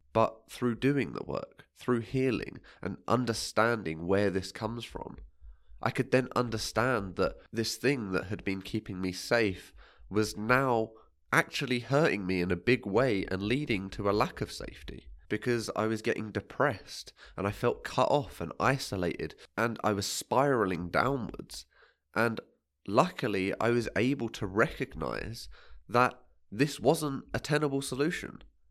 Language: English